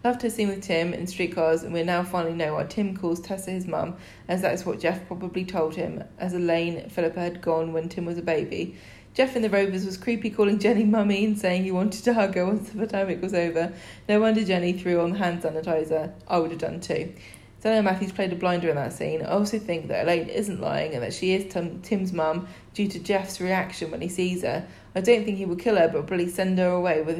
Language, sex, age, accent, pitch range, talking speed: English, female, 20-39, British, 170-205 Hz, 250 wpm